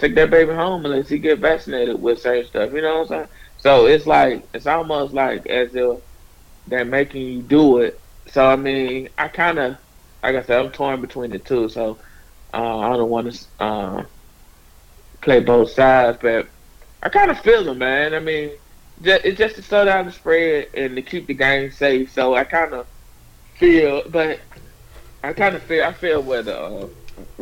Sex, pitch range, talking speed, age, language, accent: male, 115-145 Hz, 195 wpm, 20-39, English, American